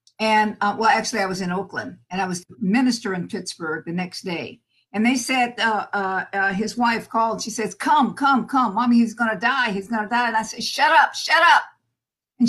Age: 50-69